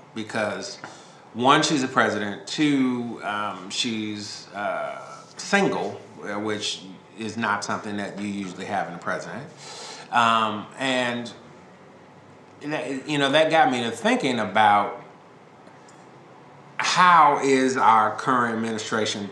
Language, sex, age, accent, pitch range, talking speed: English, male, 30-49, American, 110-140 Hz, 110 wpm